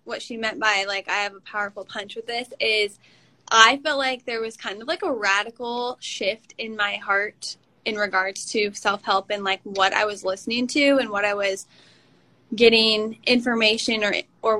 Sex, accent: female, American